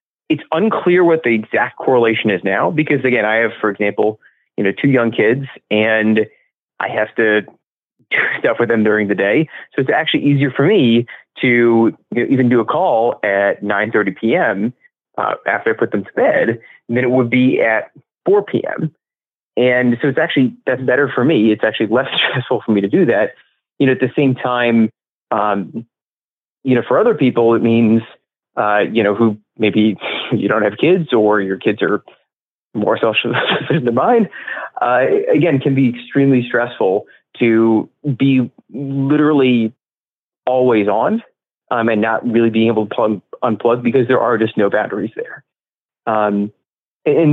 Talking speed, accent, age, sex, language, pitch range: 170 wpm, American, 30-49, male, English, 110-135 Hz